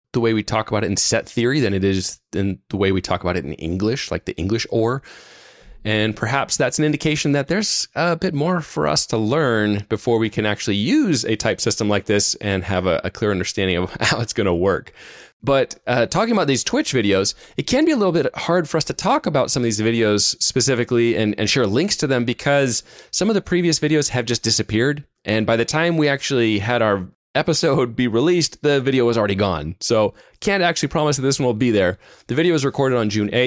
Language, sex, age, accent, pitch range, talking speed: English, male, 20-39, American, 105-145 Hz, 235 wpm